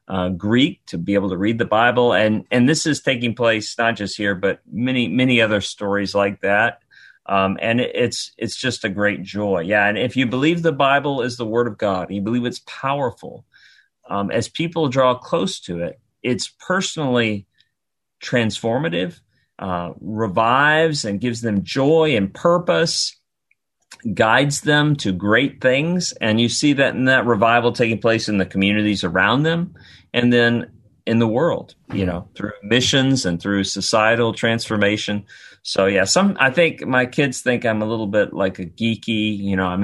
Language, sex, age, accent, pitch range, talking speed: English, male, 40-59, American, 105-135 Hz, 175 wpm